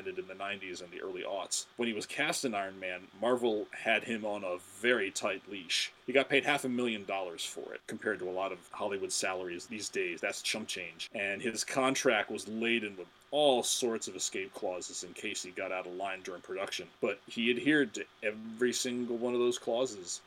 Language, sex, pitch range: English, male, 105-130 Hz